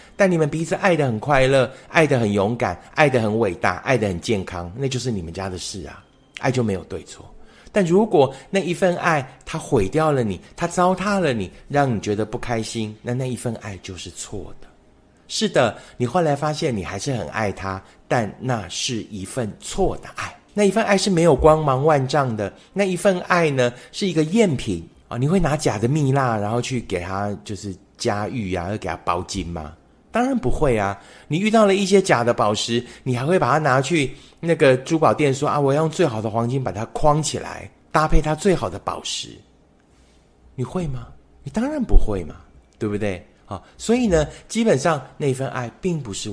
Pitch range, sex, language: 105-160 Hz, male, Chinese